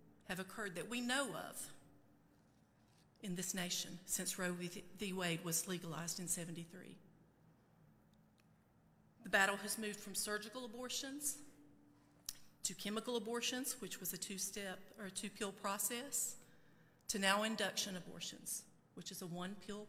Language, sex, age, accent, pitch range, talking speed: English, female, 40-59, American, 180-220 Hz, 130 wpm